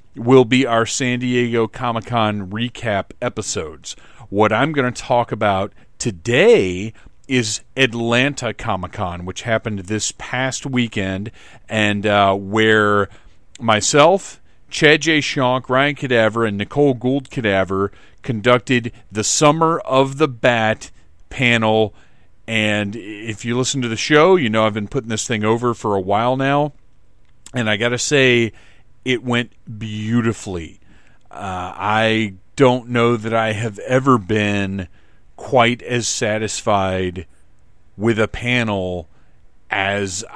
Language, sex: English, male